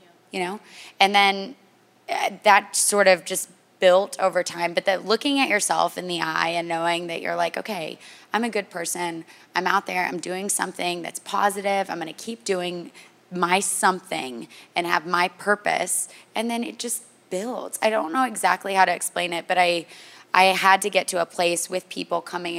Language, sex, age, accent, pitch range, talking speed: English, female, 20-39, American, 175-215 Hz, 195 wpm